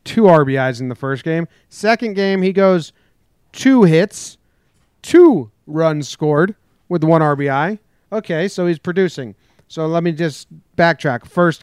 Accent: American